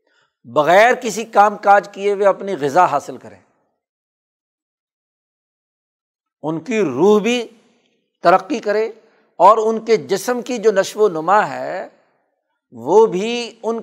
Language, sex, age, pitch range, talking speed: Urdu, male, 60-79, 180-215 Hz, 120 wpm